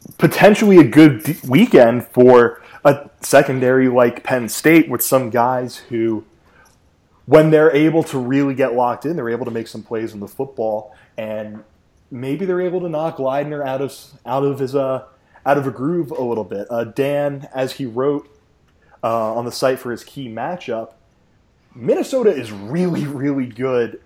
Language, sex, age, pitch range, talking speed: English, male, 20-39, 120-150 Hz, 165 wpm